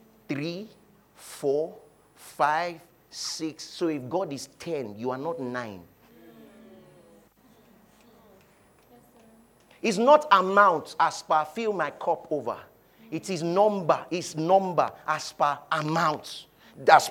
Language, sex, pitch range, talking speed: English, male, 145-220 Hz, 110 wpm